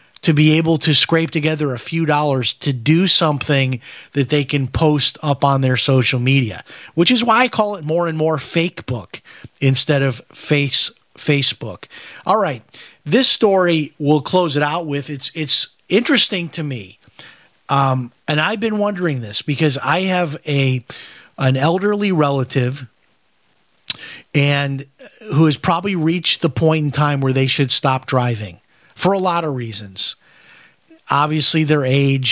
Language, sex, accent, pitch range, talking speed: English, male, American, 130-165 Hz, 160 wpm